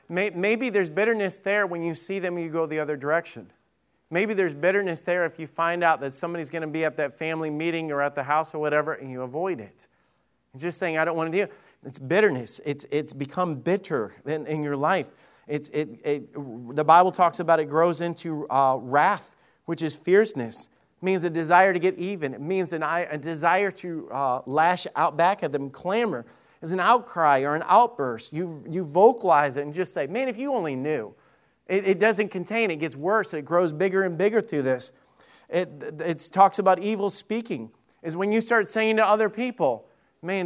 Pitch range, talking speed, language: 155-195 Hz, 210 wpm, English